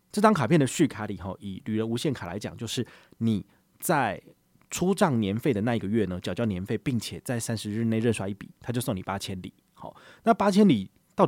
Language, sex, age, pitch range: Chinese, male, 30-49, 100-135 Hz